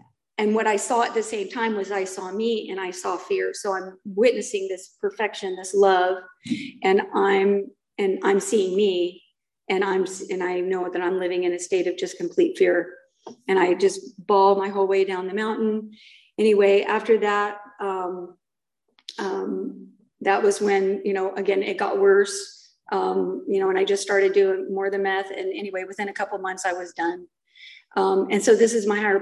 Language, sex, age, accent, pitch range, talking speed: English, female, 40-59, American, 190-230 Hz, 195 wpm